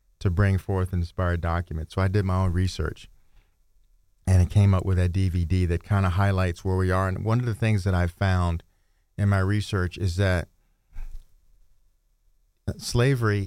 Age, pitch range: 40-59, 85-110 Hz